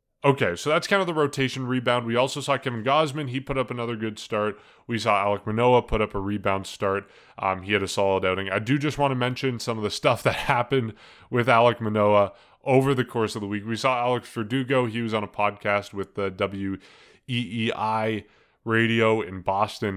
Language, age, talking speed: English, 20-39, 210 wpm